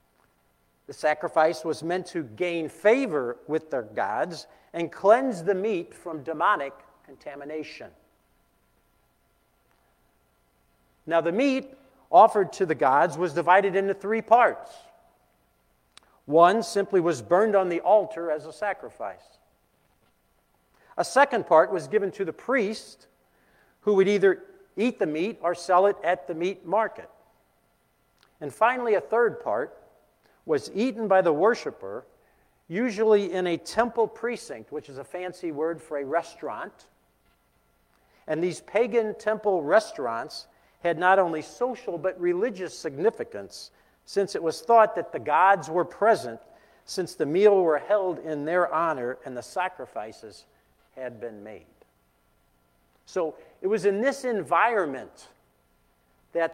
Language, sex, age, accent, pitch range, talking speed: English, male, 50-69, American, 140-210 Hz, 135 wpm